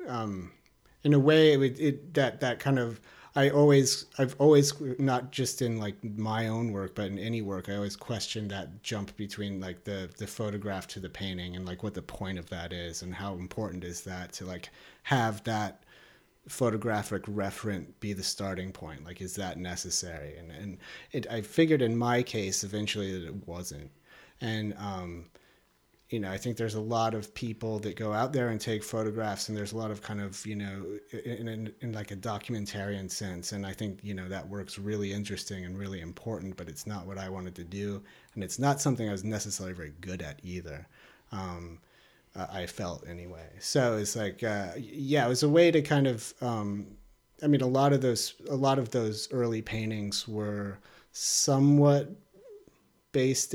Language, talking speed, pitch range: English, 195 wpm, 95-120 Hz